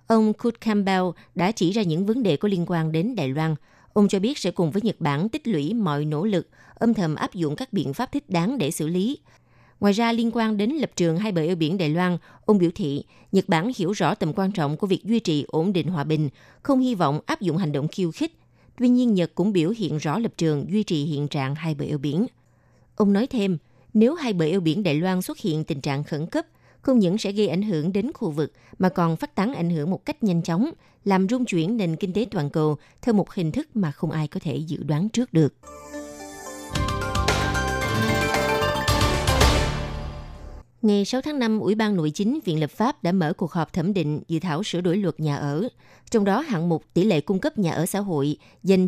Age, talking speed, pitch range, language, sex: 20-39, 235 wpm, 155-210 Hz, Vietnamese, female